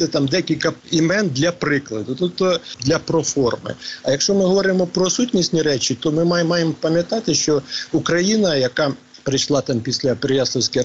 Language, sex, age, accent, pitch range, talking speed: Ukrainian, male, 50-69, native, 135-165 Hz, 155 wpm